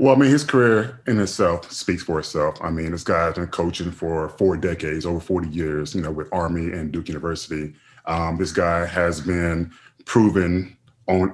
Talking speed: 195 wpm